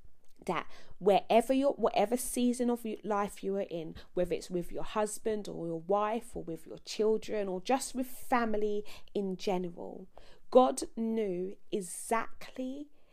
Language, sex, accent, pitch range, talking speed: English, female, British, 185-240 Hz, 140 wpm